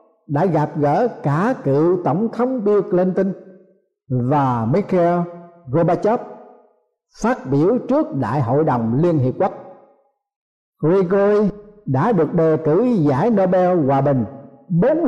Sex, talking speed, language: male, 125 wpm, Vietnamese